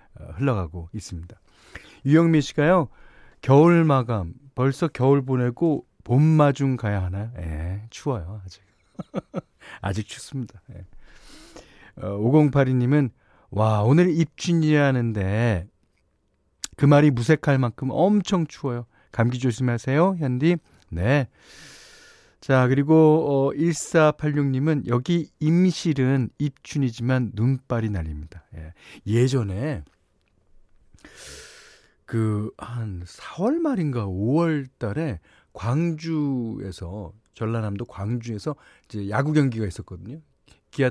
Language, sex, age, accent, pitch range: Korean, male, 40-59, native, 105-150 Hz